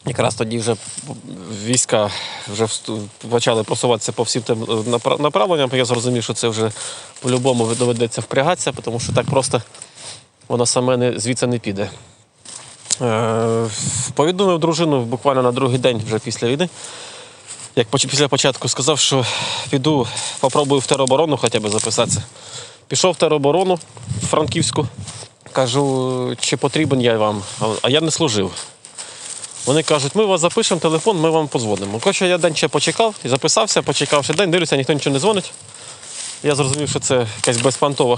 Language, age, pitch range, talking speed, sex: Ukrainian, 20-39, 120-155 Hz, 145 wpm, male